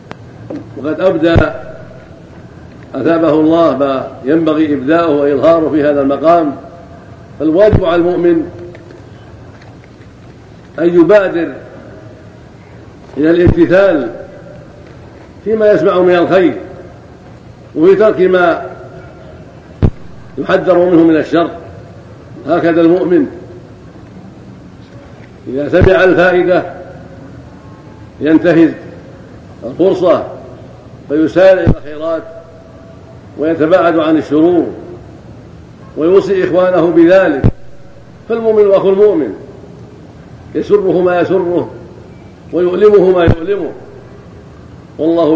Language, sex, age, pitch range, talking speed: Arabic, male, 50-69, 145-175 Hz, 75 wpm